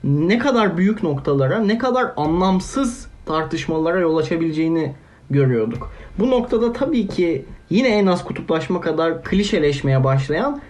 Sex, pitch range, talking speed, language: male, 140-205 Hz, 125 wpm, Turkish